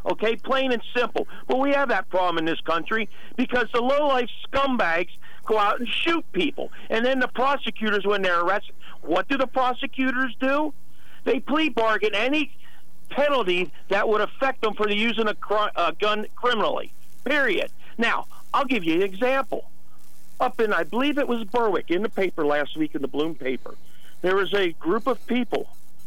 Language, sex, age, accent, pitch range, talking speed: English, male, 50-69, American, 155-235 Hz, 175 wpm